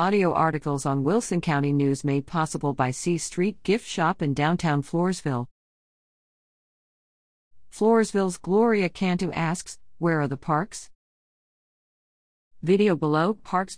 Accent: American